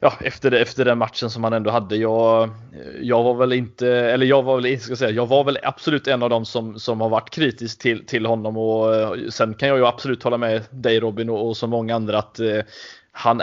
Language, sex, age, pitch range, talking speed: Swedish, male, 20-39, 115-130 Hz, 245 wpm